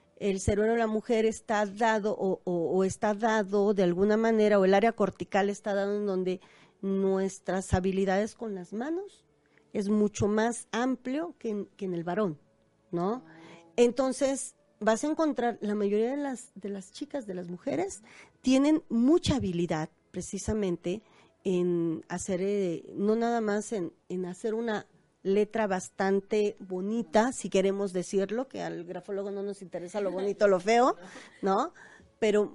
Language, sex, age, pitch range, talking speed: Spanish, female, 40-59, 195-235 Hz, 160 wpm